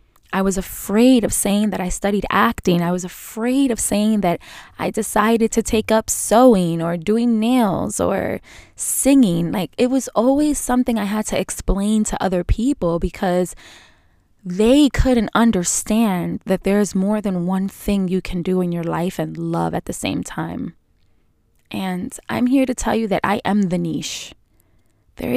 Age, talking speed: 20-39, 170 wpm